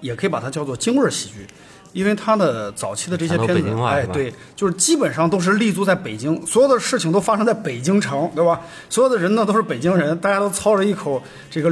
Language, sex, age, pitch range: Chinese, male, 30-49, 140-210 Hz